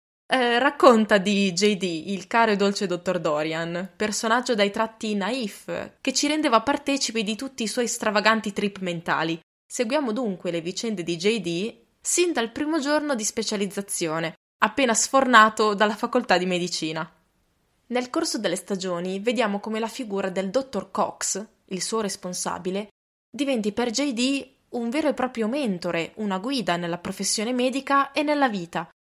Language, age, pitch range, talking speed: Italian, 20-39, 180-235 Hz, 150 wpm